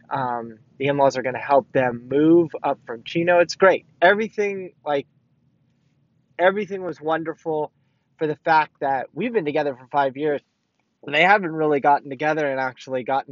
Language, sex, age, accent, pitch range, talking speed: English, male, 20-39, American, 135-175 Hz, 165 wpm